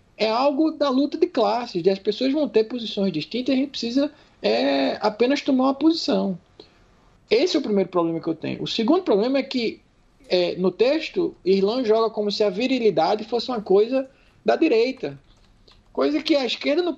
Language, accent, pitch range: Portuguese, Brazilian, 170-250 Hz